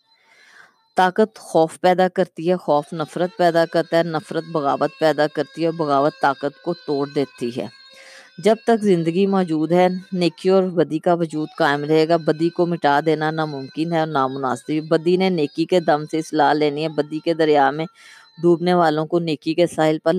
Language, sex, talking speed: Urdu, female, 185 wpm